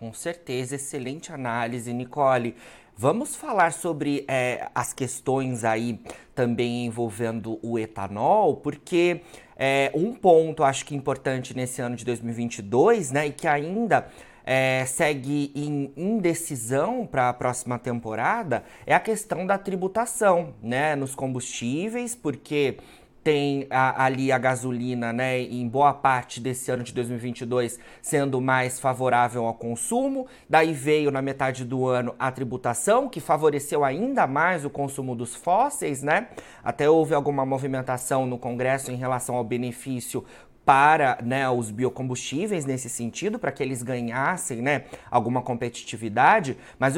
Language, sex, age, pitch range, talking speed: Portuguese, male, 30-49, 125-145 Hz, 135 wpm